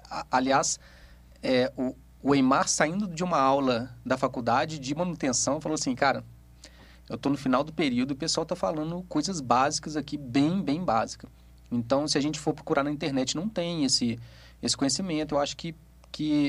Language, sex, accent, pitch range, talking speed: Portuguese, male, Brazilian, 125-160 Hz, 175 wpm